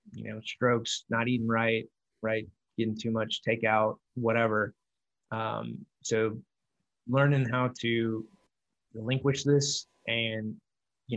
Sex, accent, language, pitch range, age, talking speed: male, American, English, 115-130 Hz, 20-39, 115 wpm